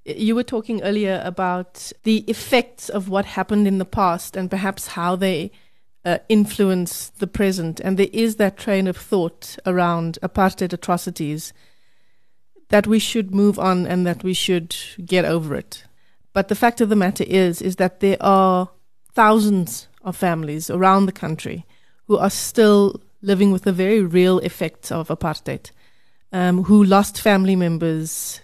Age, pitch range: 30-49, 180-210 Hz